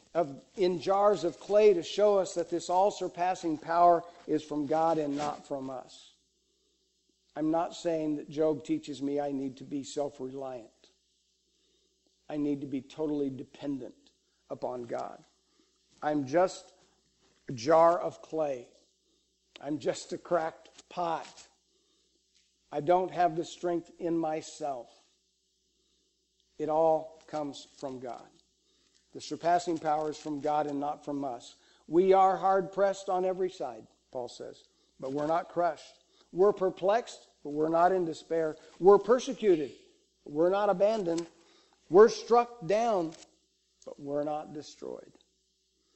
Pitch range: 150-190 Hz